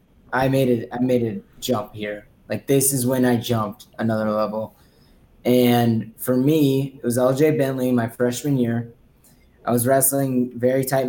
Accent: American